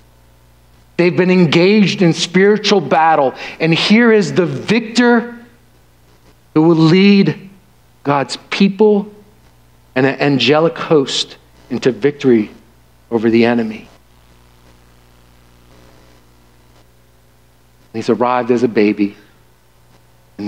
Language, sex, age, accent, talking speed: English, male, 50-69, American, 90 wpm